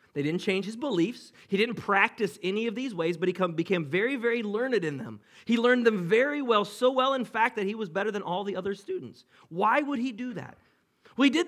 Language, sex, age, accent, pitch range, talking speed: English, male, 40-59, American, 145-230 Hz, 240 wpm